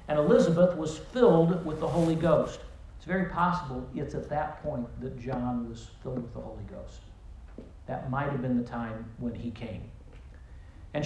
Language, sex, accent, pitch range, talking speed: English, male, American, 120-185 Hz, 180 wpm